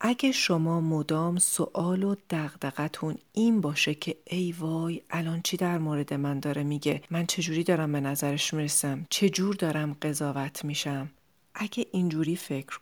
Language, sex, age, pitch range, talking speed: Persian, female, 40-59, 150-185 Hz, 145 wpm